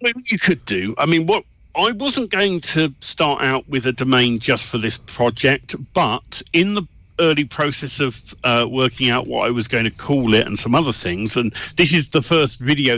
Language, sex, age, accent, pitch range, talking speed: English, male, 40-59, British, 110-160 Hz, 210 wpm